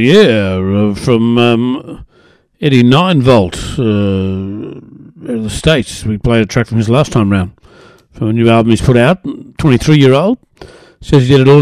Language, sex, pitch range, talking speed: English, male, 115-150 Hz, 165 wpm